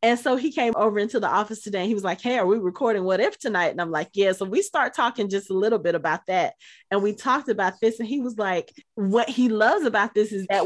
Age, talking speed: 30-49, 280 wpm